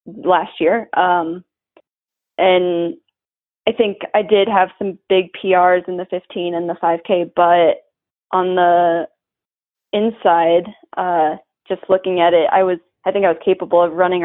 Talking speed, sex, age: 150 wpm, female, 20-39